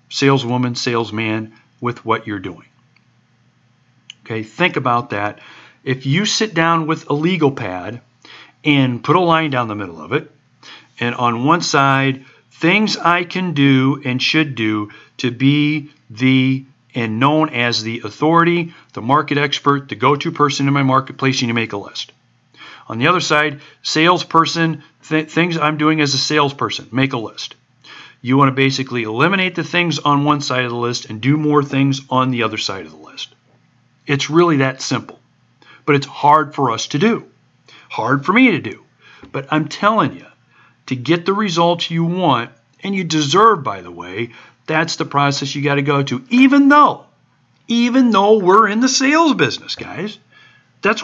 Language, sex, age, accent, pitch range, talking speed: English, male, 50-69, American, 125-170 Hz, 180 wpm